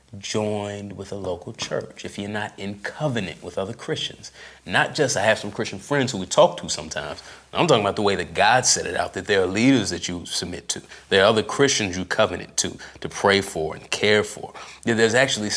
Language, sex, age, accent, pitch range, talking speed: English, male, 30-49, American, 100-130 Hz, 225 wpm